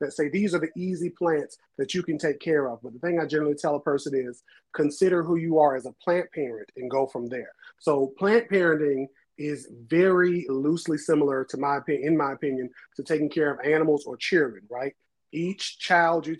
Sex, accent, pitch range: male, American, 140-165 Hz